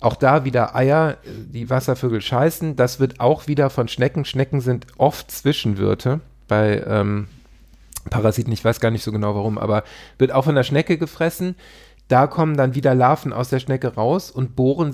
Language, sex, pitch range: German, male, 120-150 Hz